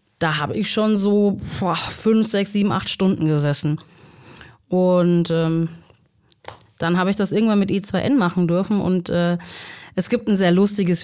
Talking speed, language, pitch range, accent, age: 165 wpm, German, 175-215 Hz, German, 30-49